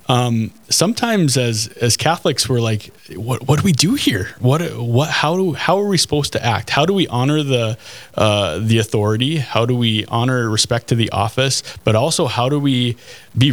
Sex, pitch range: male, 115-150 Hz